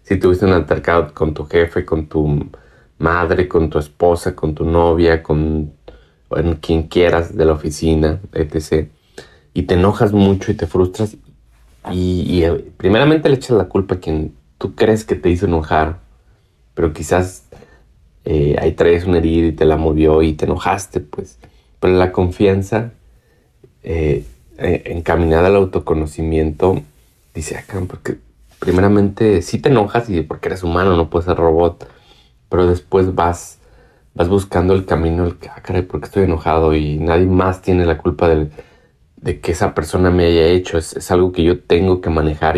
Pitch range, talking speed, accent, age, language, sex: 80-90 Hz, 165 wpm, Mexican, 30-49, Spanish, male